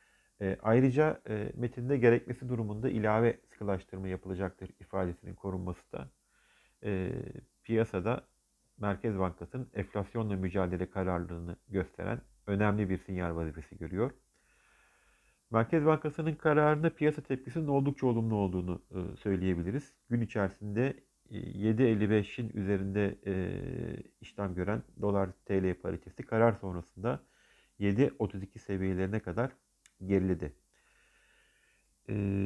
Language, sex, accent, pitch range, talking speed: Turkish, male, native, 95-130 Hz, 85 wpm